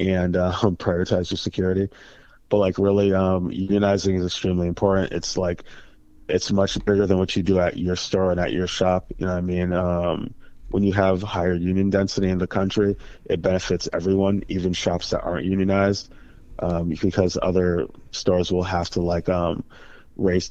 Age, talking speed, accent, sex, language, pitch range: 20-39, 180 wpm, American, male, English, 85-95 Hz